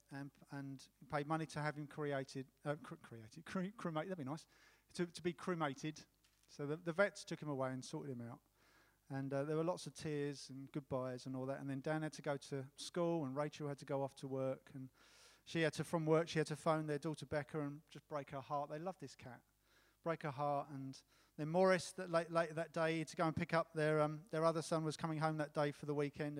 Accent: British